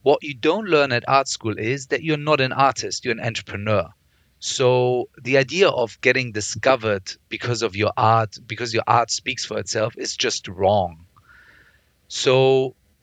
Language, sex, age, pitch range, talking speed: English, male, 40-59, 110-145 Hz, 165 wpm